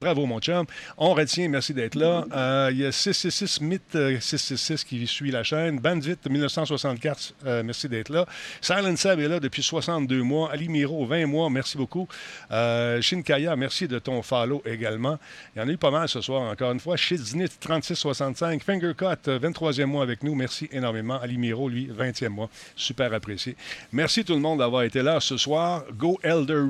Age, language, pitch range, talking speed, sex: 50-69, French, 125-155 Hz, 190 wpm, male